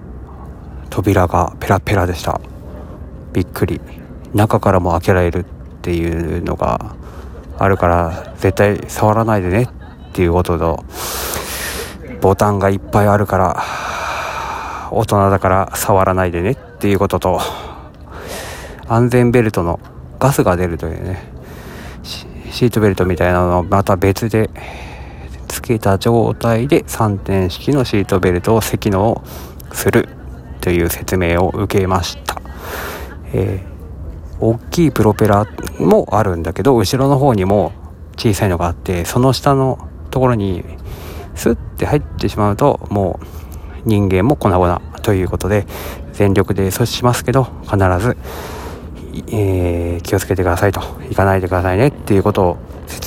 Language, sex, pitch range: Japanese, male, 85-105 Hz